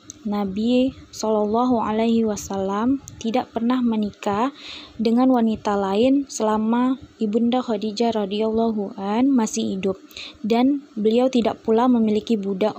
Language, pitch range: Indonesian, 215-245 Hz